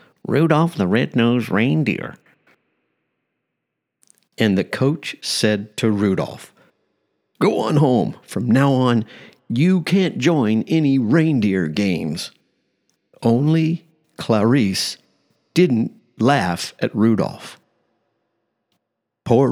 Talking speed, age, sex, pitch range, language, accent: 90 wpm, 50-69, male, 95-145 Hz, English, American